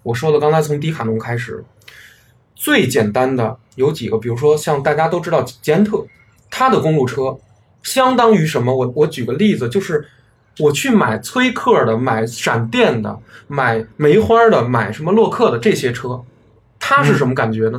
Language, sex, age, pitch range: Chinese, male, 20-39, 115-165 Hz